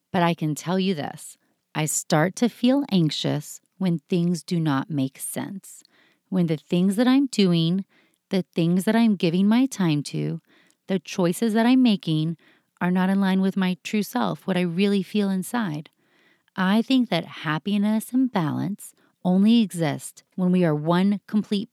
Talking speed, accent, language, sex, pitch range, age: 170 wpm, American, English, female, 155-205 Hz, 30-49